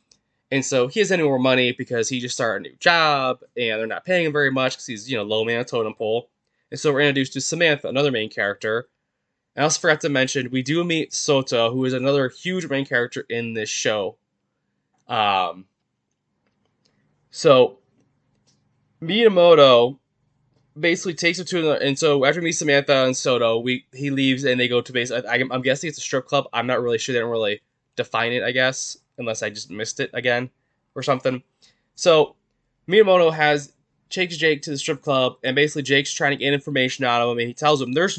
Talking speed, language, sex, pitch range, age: 205 wpm, English, male, 125-150 Hz, 20-39